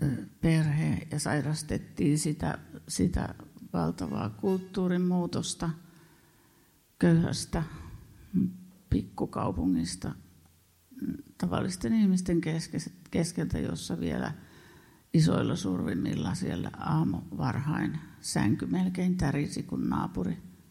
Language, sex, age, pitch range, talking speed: Finnish, female, 50-69, 110-180 Hz, 70 wpm